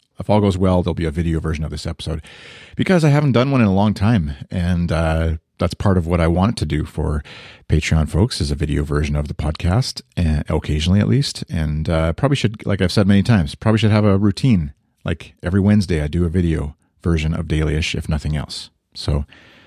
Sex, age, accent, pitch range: male, 40-59, American, 80-100 Hz